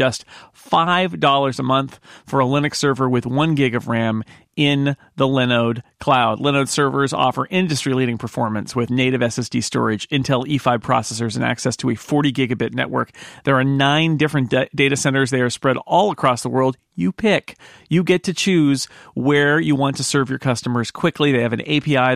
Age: 40-59